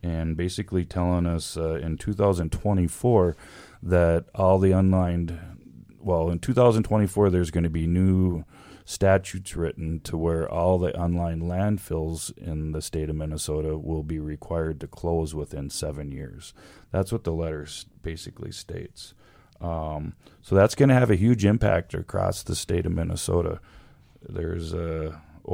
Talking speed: 145 wpm